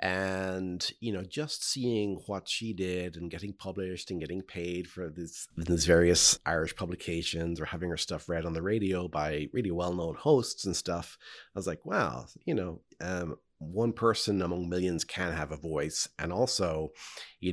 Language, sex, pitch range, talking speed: English, male, 85-105 Hz, 180 wpm